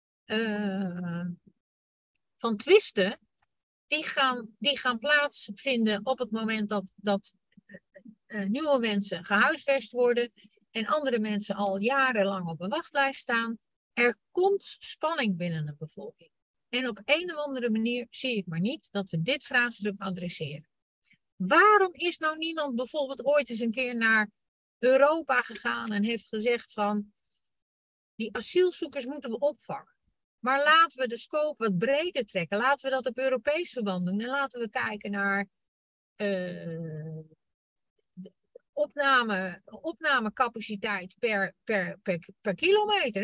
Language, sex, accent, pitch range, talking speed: Dutch, female, Dutch, 200-270 Hz, 135 wpm